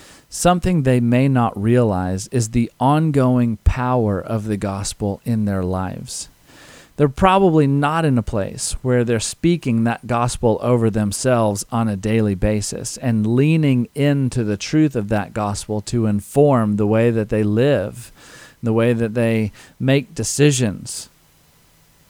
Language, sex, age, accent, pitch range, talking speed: English, male, 40-59, American, 105-130 Hz, 145 wpm